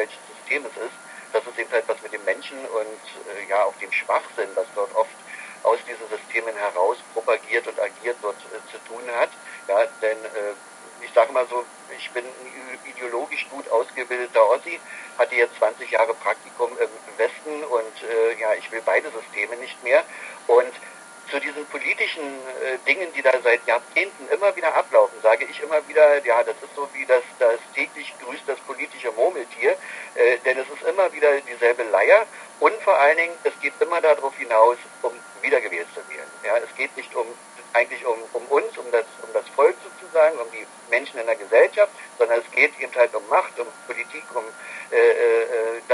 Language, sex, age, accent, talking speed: German, male, 60-79, German, 185 wpm